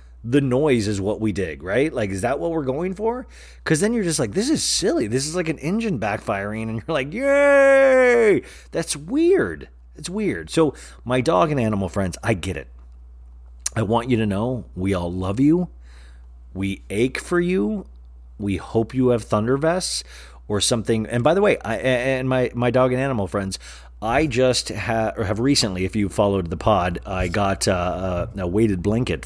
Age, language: 30-49, English